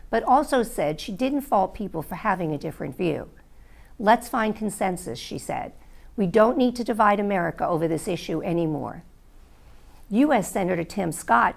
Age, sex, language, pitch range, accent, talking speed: 50-69, female, English, 165-240 Hz, American, 160 wpm